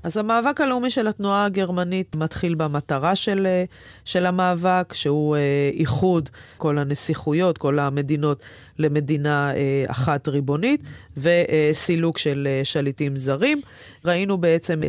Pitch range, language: 145-180 Hz, Hebrew